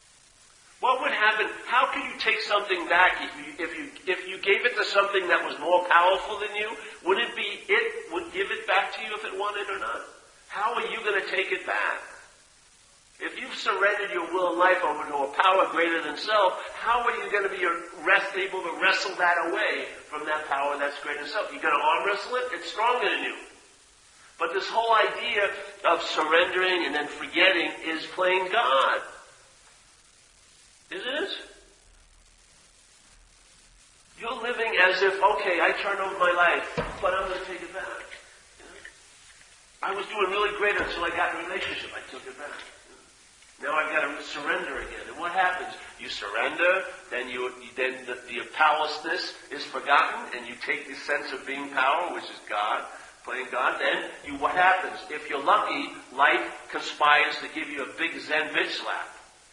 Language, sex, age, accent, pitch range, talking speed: English, male, 50-69, American, 165-215 Hz, 190 wpm